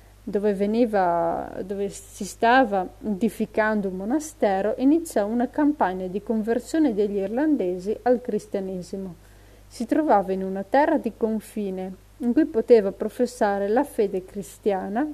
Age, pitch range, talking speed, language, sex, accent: 30-49, 190-245 Hz, 125 wpm, Italian, female, native